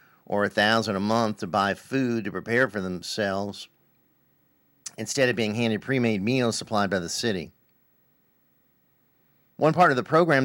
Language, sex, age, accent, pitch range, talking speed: English, male, 50-69, American, 100-125 Hz, 155 wpm